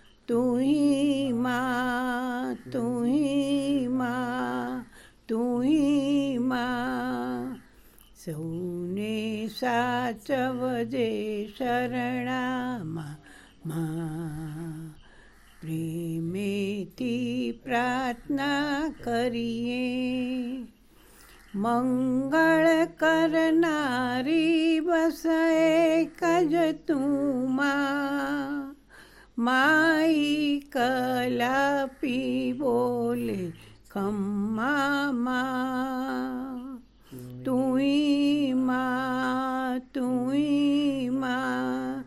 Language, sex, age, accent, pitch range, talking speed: Gujarati, female, 50-69, native, 215-275 Hz, 40 wpm